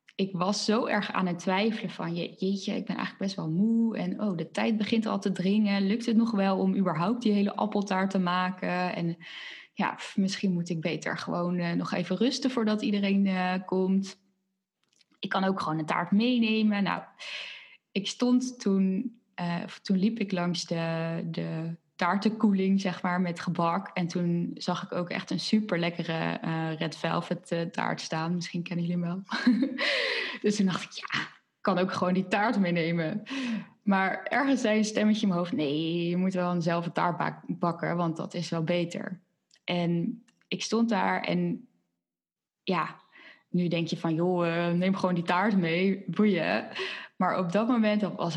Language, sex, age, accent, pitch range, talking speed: Dutch, female, 20-39, Dutch, 175-210 Hz, 185 wpm